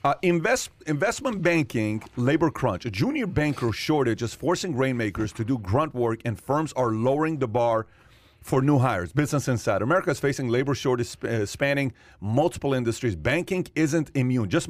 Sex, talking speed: male, 170 wpm